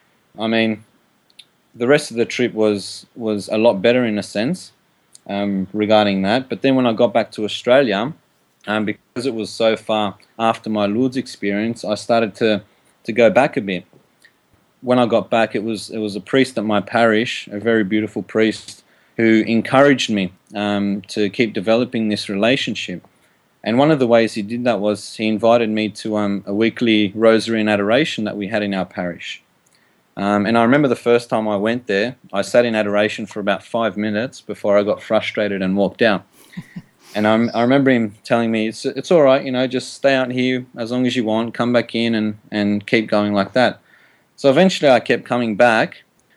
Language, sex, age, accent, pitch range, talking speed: English, male, 30-49, Australian, 105-120 Hz, 200 wpm